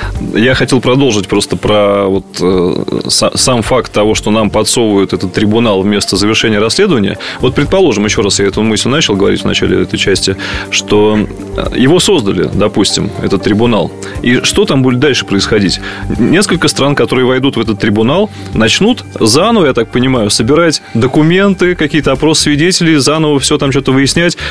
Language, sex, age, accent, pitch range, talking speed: Russian, male, 20-39, native, 105-135 Hz, 160 wpm